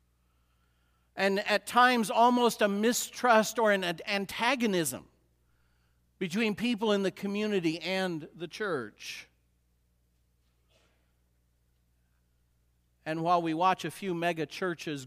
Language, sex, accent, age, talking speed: English, male, American, 50-69, 95 wpm